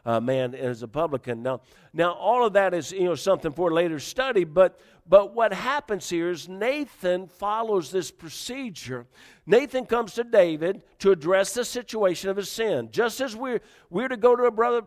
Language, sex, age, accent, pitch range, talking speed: English, male, 50-69, American, 170-220 Hz, 195 wpm